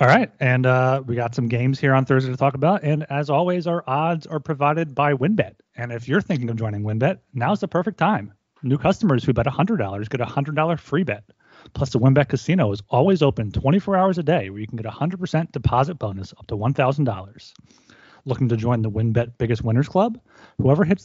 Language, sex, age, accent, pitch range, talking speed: English, male, 30-49, American, 115-150 Hz, 215 wpm